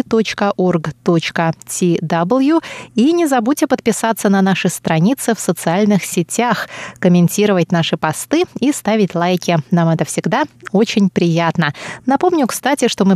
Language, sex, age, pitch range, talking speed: Russian, female, 20-39, 175-235 Hz, 115 wpm